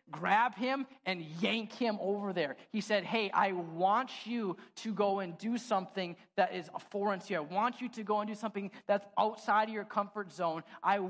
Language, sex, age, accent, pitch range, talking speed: English, male, 20-39, American, 185-235 Hz, 210 wpm